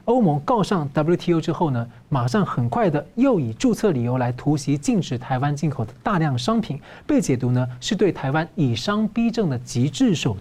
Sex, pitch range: male, 140-215 Hz